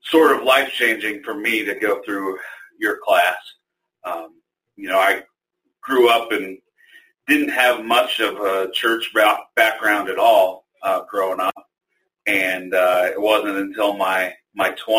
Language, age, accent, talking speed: English, 40-59, American, 145 wpm